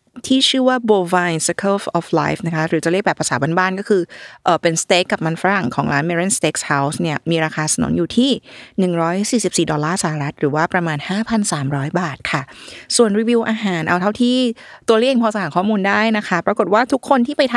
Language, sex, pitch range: Thai, female, 170-225 Hz